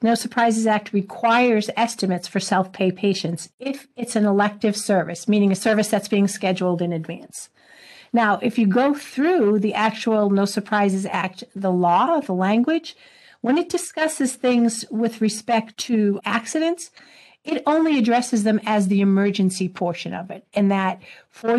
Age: 50-69